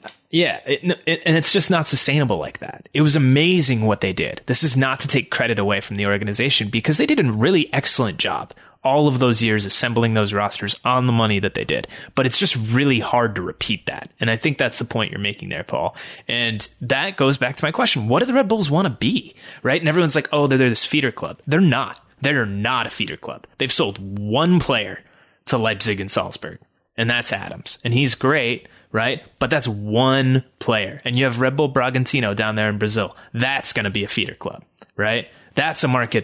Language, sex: English, male